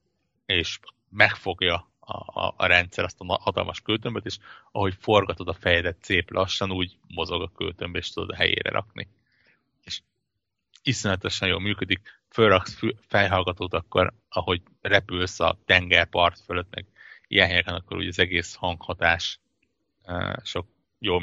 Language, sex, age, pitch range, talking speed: Hungarian, male, 30-49, 90-100 Hz, 140 wpm